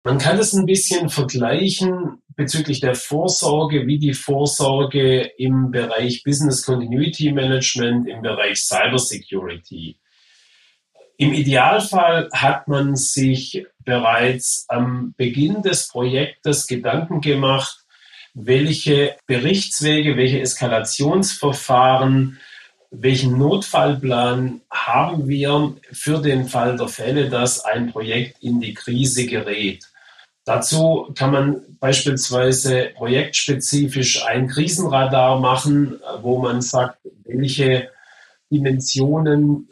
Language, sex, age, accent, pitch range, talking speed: German, male, 40-59, German, 125-145 Hz, 100 wpm